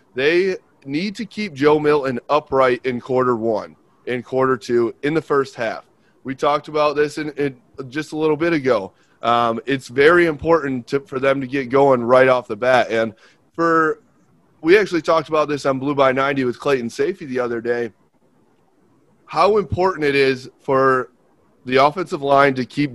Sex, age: male, 30-49